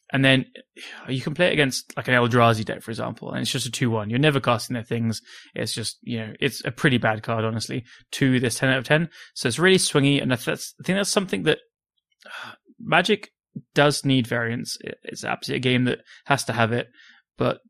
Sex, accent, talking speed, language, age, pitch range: male, British, 225 wpm, English, 20-39, 120-145 Hz